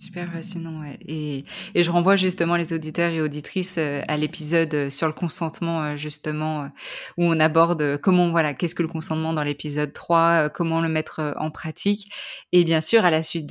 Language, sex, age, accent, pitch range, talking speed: French, female, 20-39, French, 165-205 Hz, 205 wpm